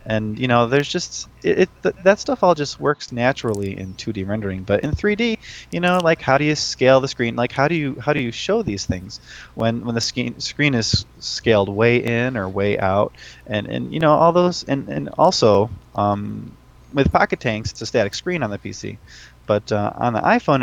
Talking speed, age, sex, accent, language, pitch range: 220 wpm, 20-39, male, American, English, 105-145 Hz